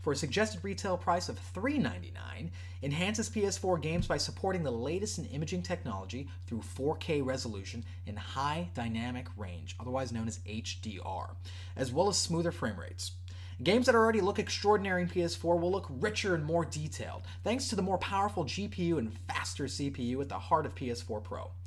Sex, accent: male, American